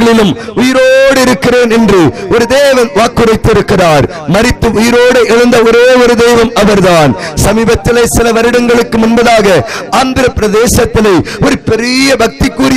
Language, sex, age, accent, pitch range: Tamil, male, 50-69, native, 220-255 Hz